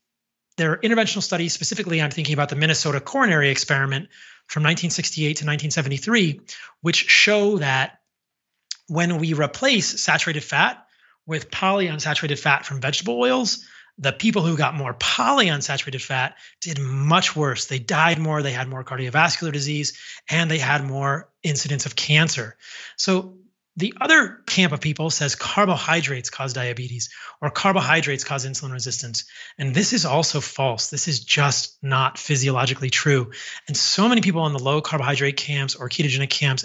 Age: 30-49